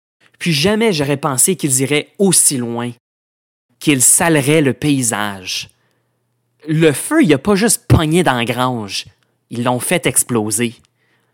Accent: Canadian